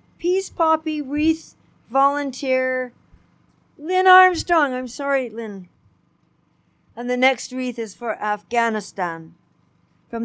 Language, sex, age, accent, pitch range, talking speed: English, female, 60-79, American, 235-290 Hz, 100 wpm